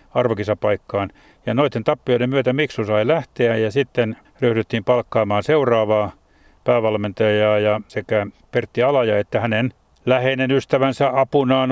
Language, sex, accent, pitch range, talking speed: Finnish, male, native, 105-125 Hz, 120 wpm